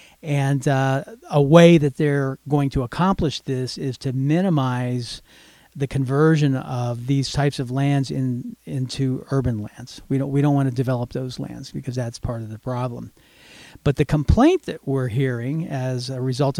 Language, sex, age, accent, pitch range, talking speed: English, male, 50-69, American, 130-170 Hz, 175 wpm